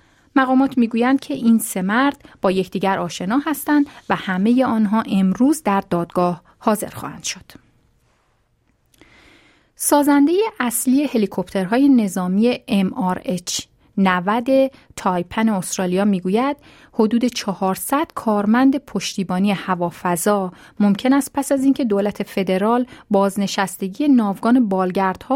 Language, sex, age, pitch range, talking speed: Persian, female, 30-49, 195-265 Hz, 100 wpm